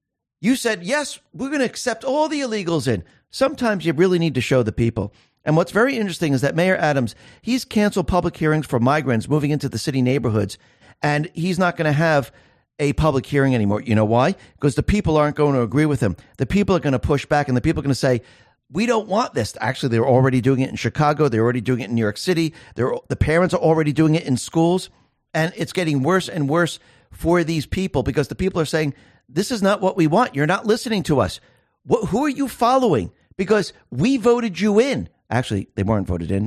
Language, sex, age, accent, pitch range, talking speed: English, male, 50-69, American, 125-190 Hz, 235 wpm